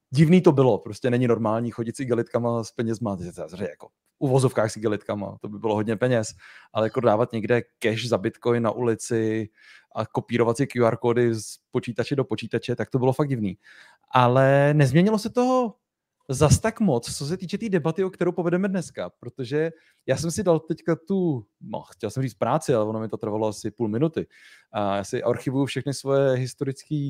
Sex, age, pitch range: male, 30-49, 120-145 Hz